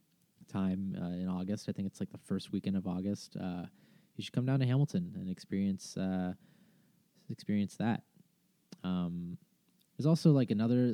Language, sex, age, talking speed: English, male, 20-39, 165 wpm